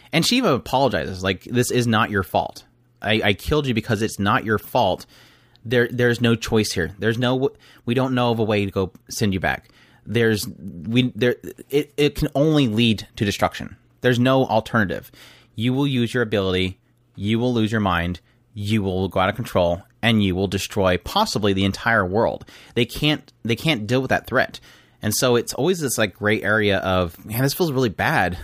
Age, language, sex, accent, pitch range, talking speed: 30-49, English, male, American, 100-125 Hz, 205 wpm